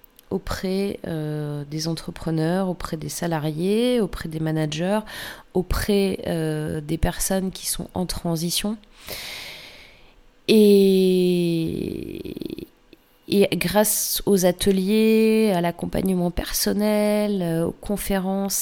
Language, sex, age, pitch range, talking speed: French, female, 30-49, 165-195 Hz, 90 wpm